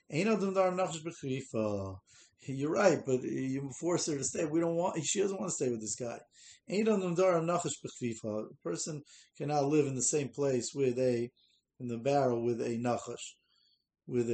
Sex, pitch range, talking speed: male, 125-175 Hz, 150 wpm